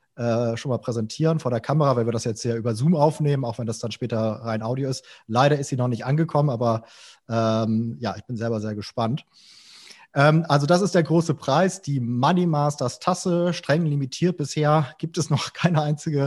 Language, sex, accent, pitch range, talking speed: German, male, German, 125-160 Hz, 205 wpm